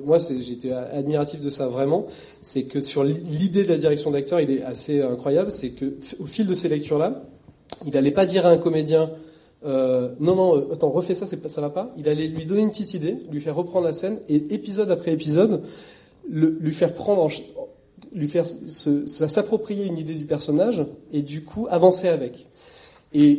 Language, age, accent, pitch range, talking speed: French, 30-49, French, 135-170 Hz, 195 wpm